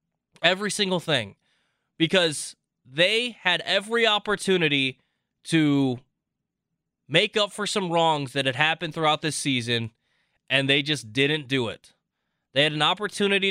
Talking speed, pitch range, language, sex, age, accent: 135 wpm, 130-175 Hz, English, male, 20-39, American